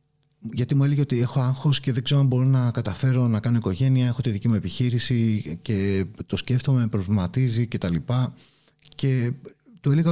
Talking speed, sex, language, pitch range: 180 wpm, male, Greek, 120-150 Hz